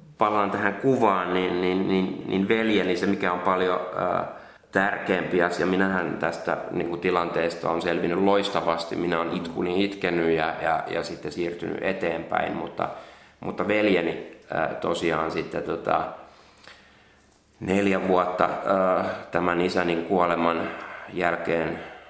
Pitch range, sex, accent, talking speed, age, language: 85-95 Hz, male, native, 100 wpm, 30-49, Finnish